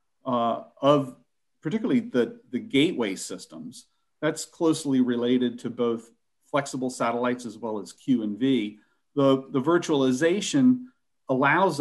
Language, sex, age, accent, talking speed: Turkish, male, 40-59, American, 120 wpm